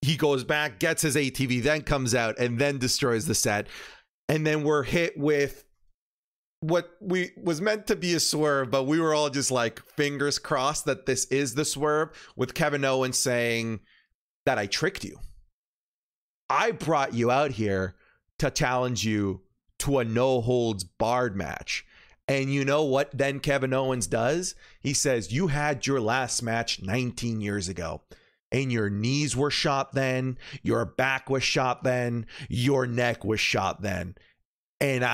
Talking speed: 165 wpm